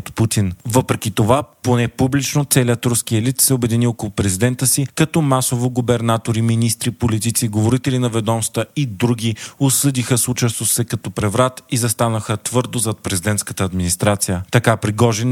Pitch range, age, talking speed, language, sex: 110-130 Hz, 40-59, 140 wpm, Bulgarian, male